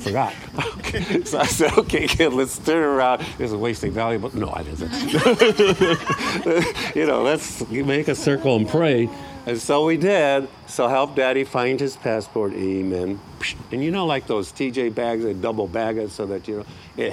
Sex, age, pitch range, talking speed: male, 50-69, 120-185 Hz, 180 wpm